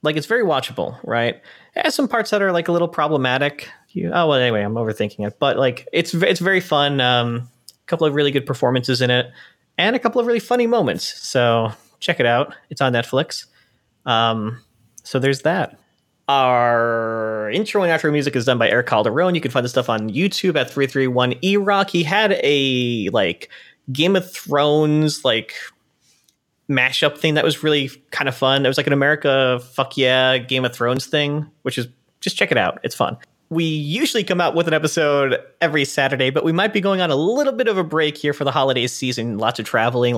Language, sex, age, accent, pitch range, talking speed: English, male, 30-49, American, 125-170 Hz, 210 wpm